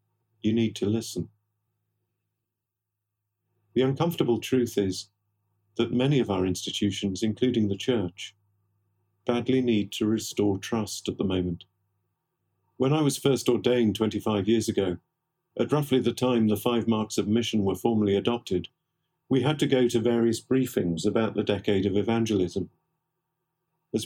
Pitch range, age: 105-130 Hz, 50-69